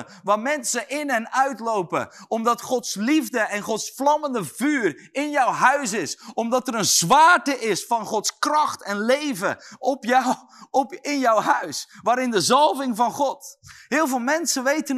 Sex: male